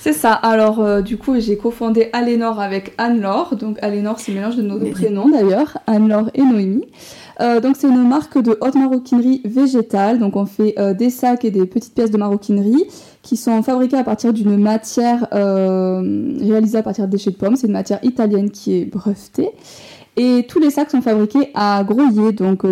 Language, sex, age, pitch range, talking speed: French, female, 20-39, 205-250 Hz, 200 wpm